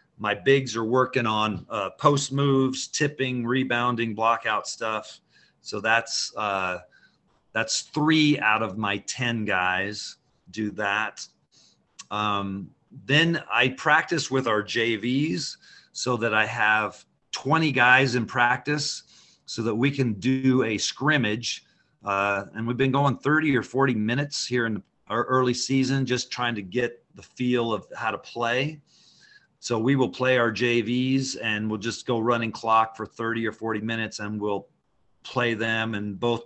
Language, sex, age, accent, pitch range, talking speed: English, male, 40-59, American, 110-130 Hz, 155 wpm